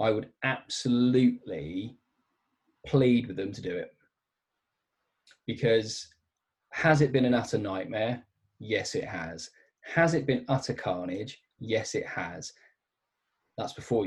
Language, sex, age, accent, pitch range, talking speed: English, male, 20-39, British, 100-125 Hz, 125 wpm